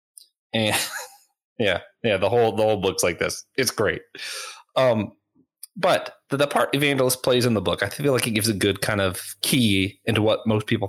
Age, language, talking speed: 30-49, English, 195 wpm